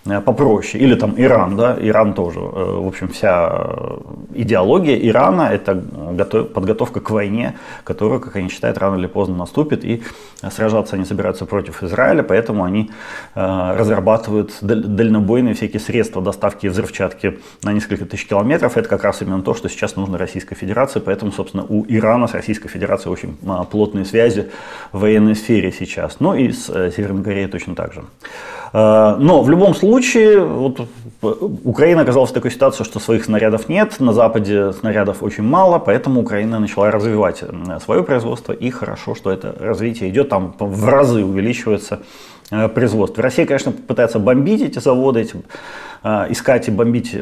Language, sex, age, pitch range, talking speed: Ukrainian, male, 30-49, 100-115 Hz, 160 wpm